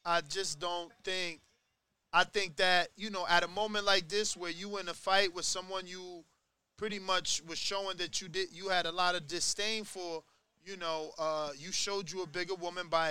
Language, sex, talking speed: English, male, 215 wpm